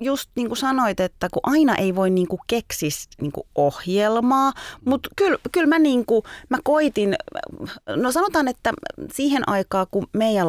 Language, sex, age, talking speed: Finnish, female, 30-49, 160 wpm